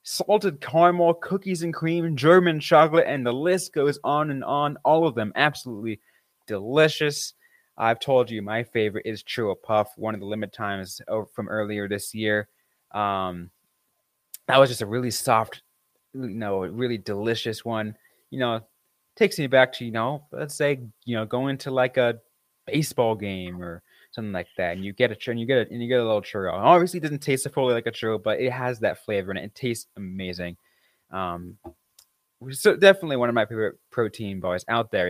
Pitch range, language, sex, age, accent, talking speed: 105-145 Hz, English, male, 20-39, American, 200 wpm